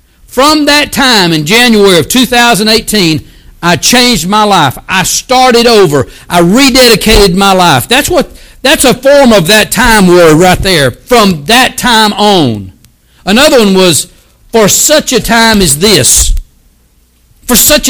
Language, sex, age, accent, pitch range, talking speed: English, male, 60-79, American, 155-230 Hz, 150 wpm